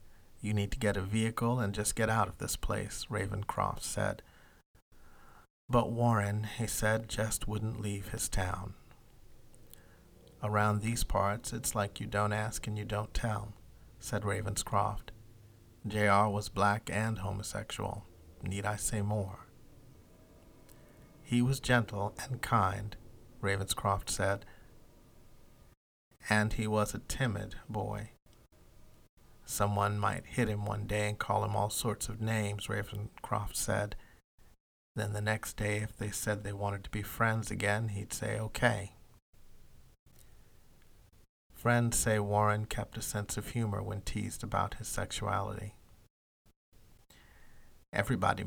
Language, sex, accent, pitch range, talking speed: English, male, American, 100-110 Hz, 130 wpm